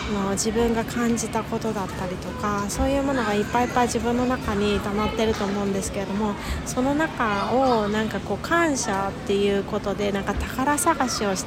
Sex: female